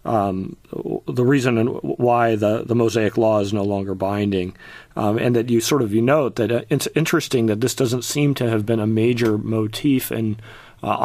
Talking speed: 200 wpm